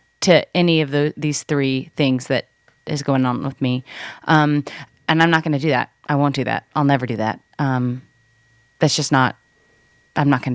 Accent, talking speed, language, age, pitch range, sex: American, 205 wpm, English, 30-49, 140-170 Hz, female